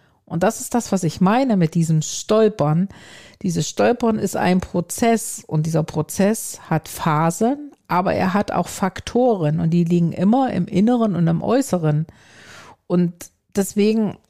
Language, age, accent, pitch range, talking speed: German, 50-69, German, 170-225 Hz, 150 wpm